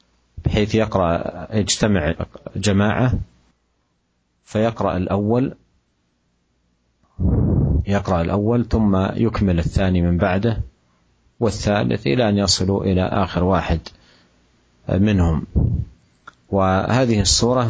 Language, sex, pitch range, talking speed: Malay, male, 85-105 Hz, 80 wpm